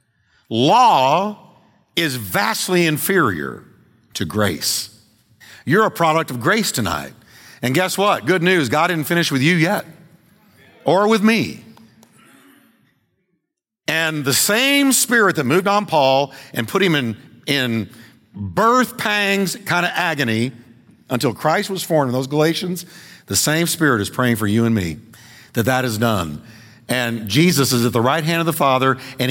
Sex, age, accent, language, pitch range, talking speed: male, 50-69, American, English, 120-185 Hz, 155 wpm